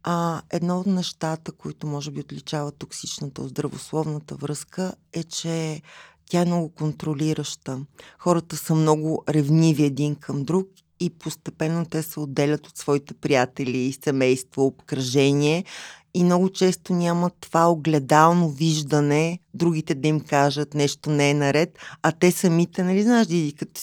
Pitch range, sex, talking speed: 150-175 Hz, female, 145 wpm